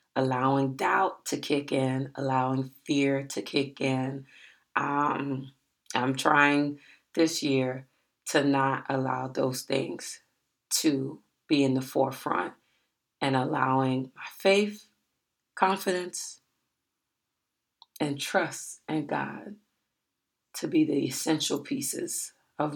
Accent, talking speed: American, 105 wpm